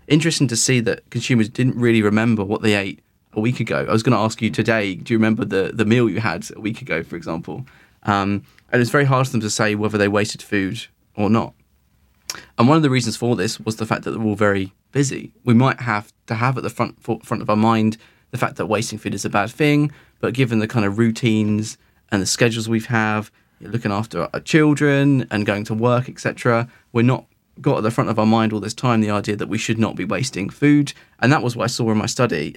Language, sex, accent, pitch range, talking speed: English, male, British, 105-125 Hz, 250 wpm